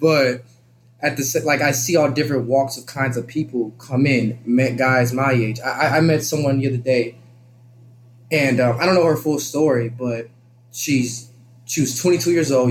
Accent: American